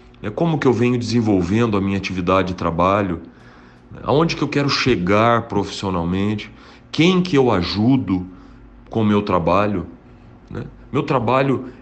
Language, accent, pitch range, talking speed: Portuguese, Brazilian, 95-120 Hz, 140 wpm